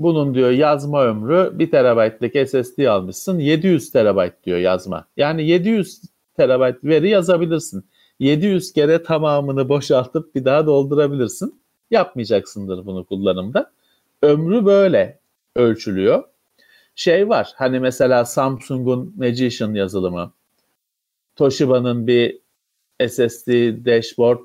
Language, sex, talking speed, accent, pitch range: Turkish, male, 100 wpm, native, 120-185 Hz